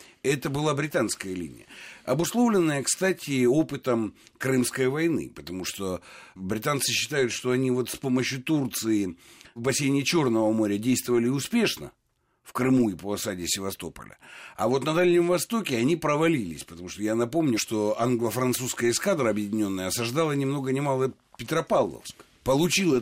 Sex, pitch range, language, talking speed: male, 110-140 Hz, Russian, 140 wpm